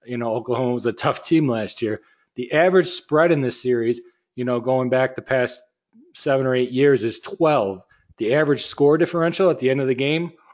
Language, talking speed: English, 210 wpm